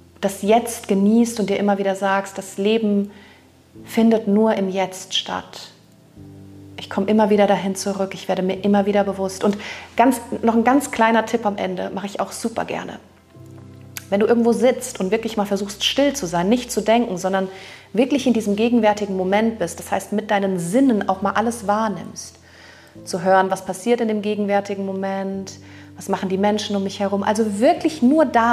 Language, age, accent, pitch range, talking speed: German, 30-49, German, 190-230 Hz, 190 wpm